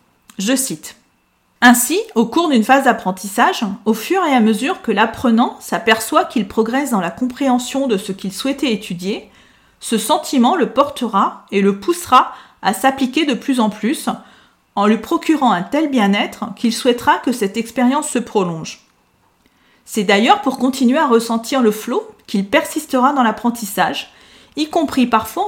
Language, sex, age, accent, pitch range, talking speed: French, female, 40-59, French, 215-265 Hz, 160 wpm